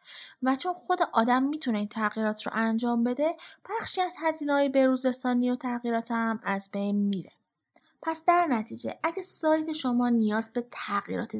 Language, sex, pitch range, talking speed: Persian, female, 215-310 Hz, 155 wpm